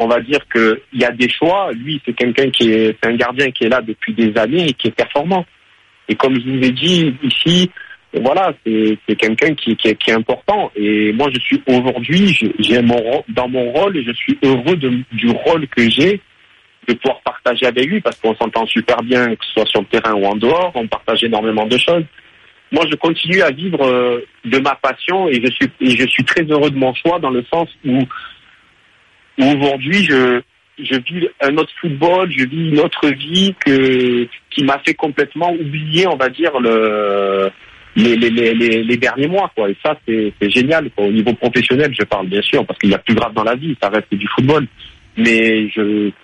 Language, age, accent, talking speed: French, 50-69, French, 215 wpm